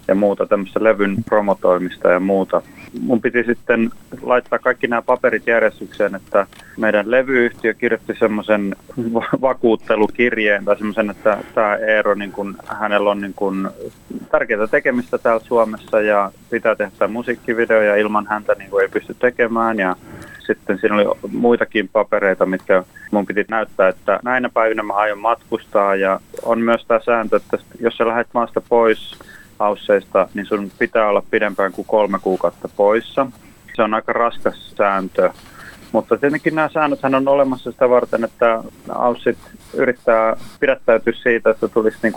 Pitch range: 105-120 Hz